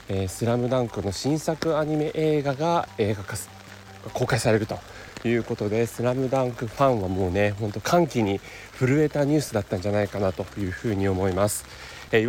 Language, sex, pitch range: Japanese, male, 105-145 Hz